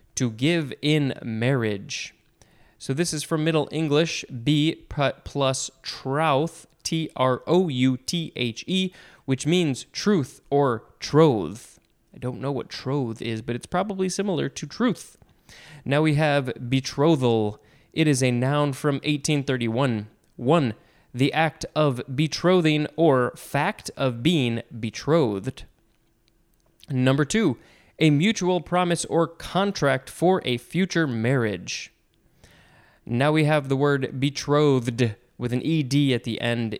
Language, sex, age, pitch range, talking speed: English, male, 20-39, 125-155 Hz, 125 wpm